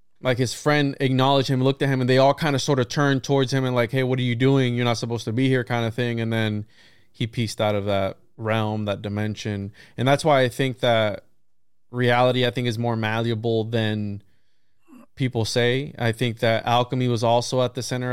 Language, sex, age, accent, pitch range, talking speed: English, male, 20-39, American, 115-135 Hz, 225 wpm